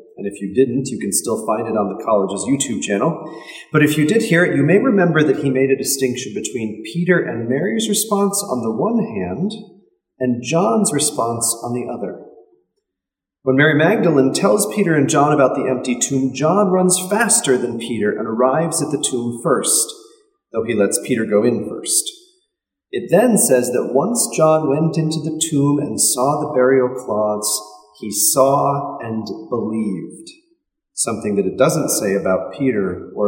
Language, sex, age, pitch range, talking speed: English, male, 40-59, 125-190 Hz, 180 wpm